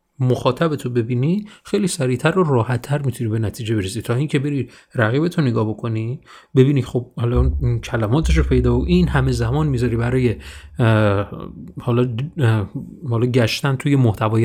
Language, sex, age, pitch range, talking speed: Persian, male, 30-49, 120-155 Hz, 140 wpm